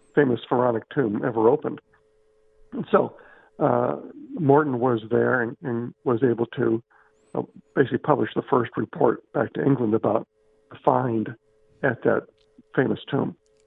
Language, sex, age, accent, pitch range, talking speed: English, male, 50-69, American, 120-165 Hz, 140 wpm